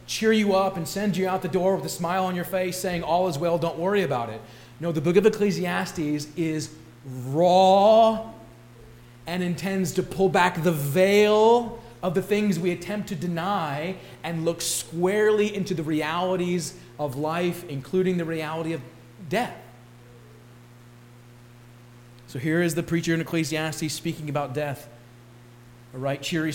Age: 30-49